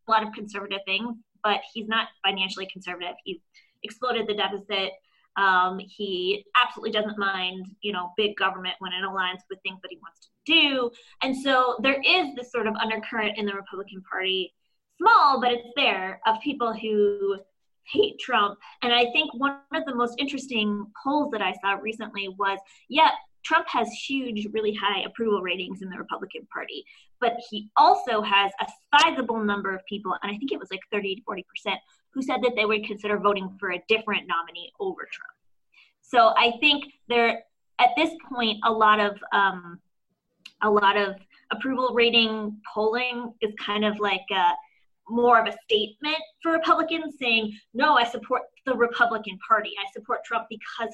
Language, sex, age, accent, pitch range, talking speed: English, female, 20-39, American, 195-245 Hz, 180 wpm